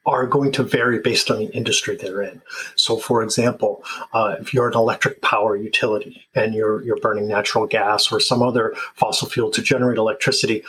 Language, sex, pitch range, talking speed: English, male, 115-160 Hz, 190 wpm